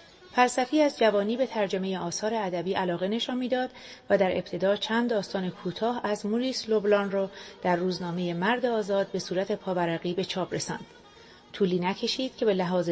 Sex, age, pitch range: female, 40-59, 180-225 Hz